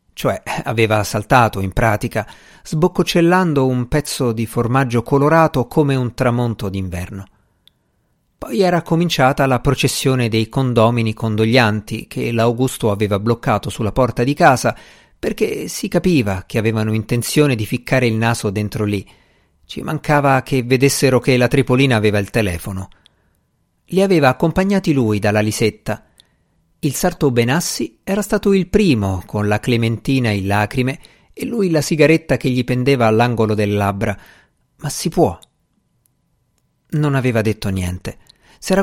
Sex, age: male, 50-69